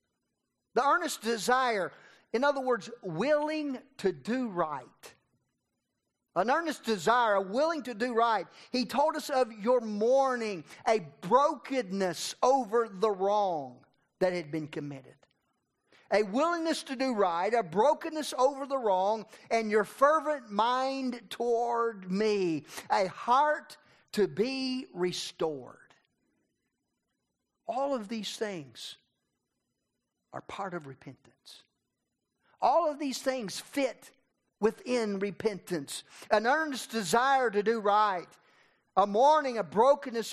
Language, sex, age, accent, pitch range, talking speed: English, male, 50-69, American, 195-265 Hz, 120 wpm